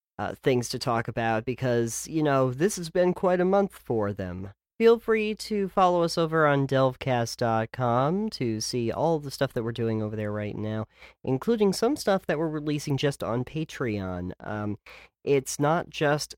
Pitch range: 110-145 Hz